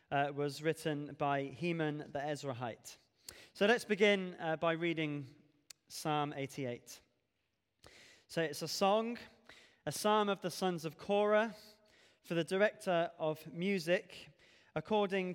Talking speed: 125 wpm